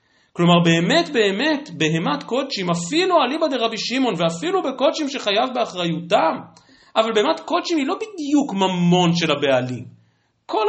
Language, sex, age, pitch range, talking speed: Hebrew, male, 40-59, 160-275 Hz, 130 wpm